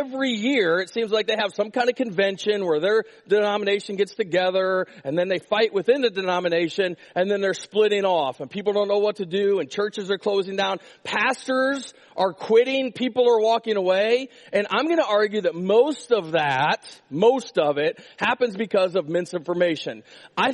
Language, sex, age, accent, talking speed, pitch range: English, male, 40-59, American, 185 wpm, 200-265 Hz